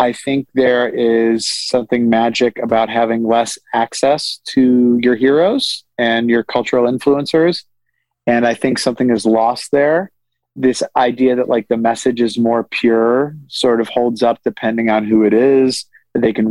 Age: 30-49